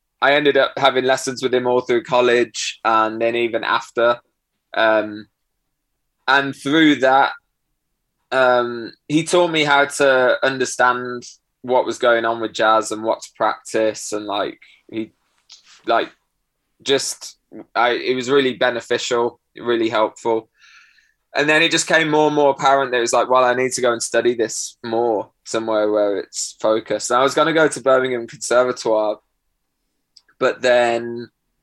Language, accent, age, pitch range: English, British, 20-39, 110-135 Hz